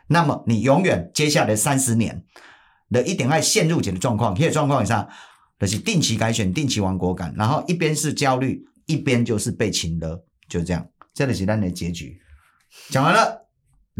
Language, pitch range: Chinese, 90-130 Hz